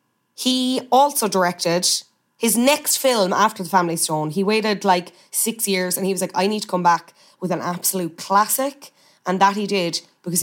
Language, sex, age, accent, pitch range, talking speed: English, female, 20-39, Irish, 175-210 Hz, 190 wpm